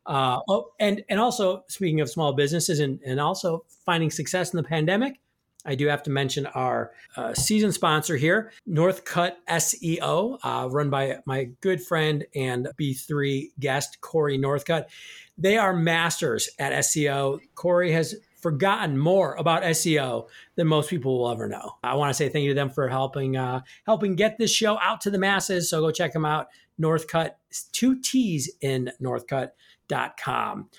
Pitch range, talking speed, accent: 145-185 Hz, 165 wpm, American